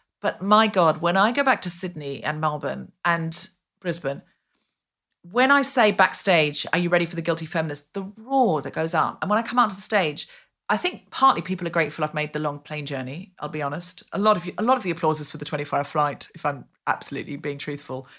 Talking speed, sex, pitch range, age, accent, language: 240 wpm, female, 160-225 Hz, 40-59, British, English